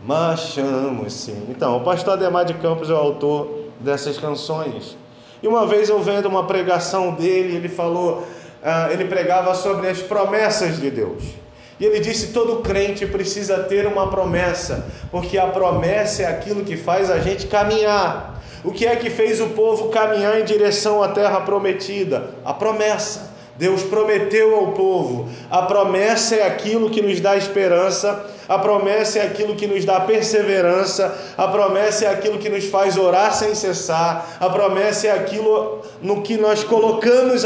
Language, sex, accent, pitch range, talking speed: Portuguese, male, Brazilian, 180-215 Hz, 165 wpm